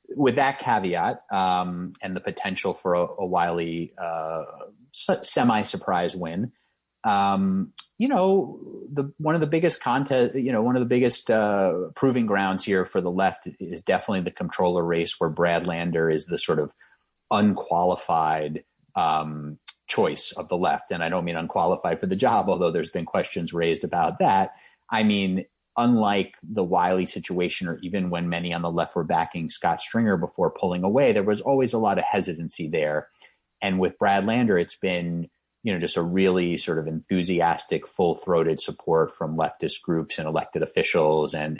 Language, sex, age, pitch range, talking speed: English, male, 30-49, 85-105 Hz, 175 wpm